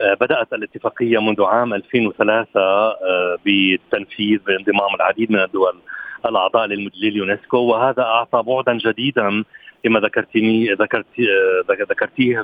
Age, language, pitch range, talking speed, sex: 40-59, Arabic, 105-125 Hz, 90 wpm, male